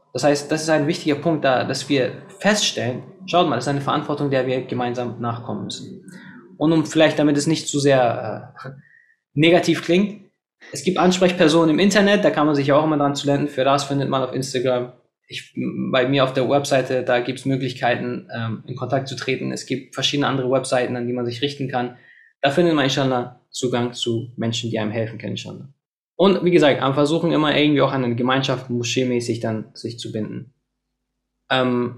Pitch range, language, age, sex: 125-160 Hz, German, 20-39, male